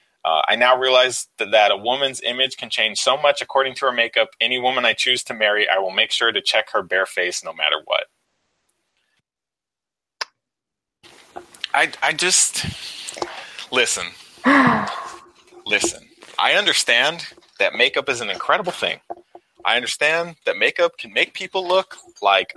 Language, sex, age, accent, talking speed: English, male, 30-49, American, 150 wpm